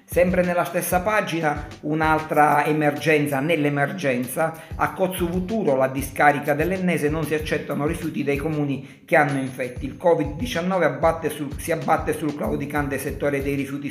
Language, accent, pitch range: Italian, native, 135-155 Hz